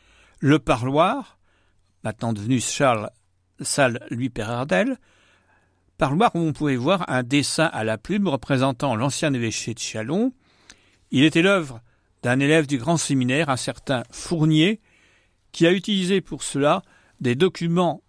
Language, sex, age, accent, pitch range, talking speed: French, male, 60-79, French, 115-165 Hz, 135 wpm